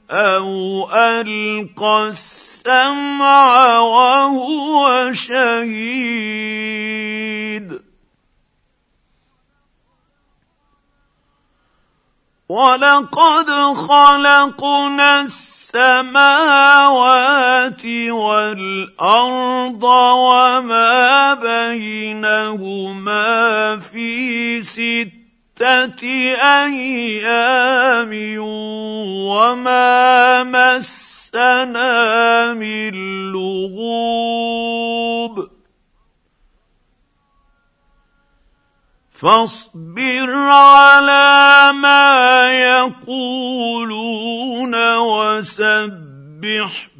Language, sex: Arabic, male